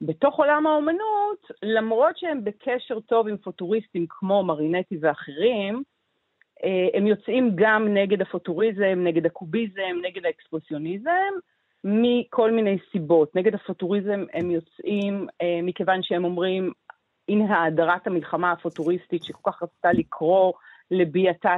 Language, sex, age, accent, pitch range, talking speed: Hebrew, female, 40-59, native, 175-230 Hz, 110 wpm